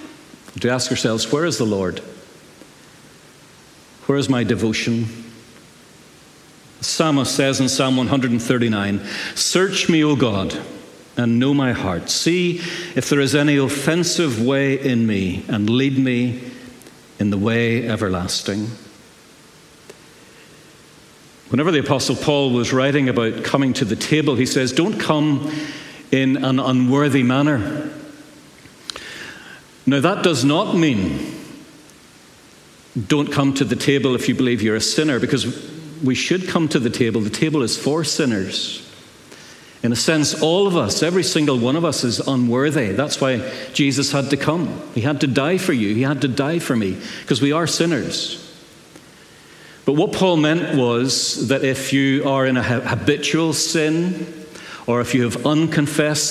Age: 60-79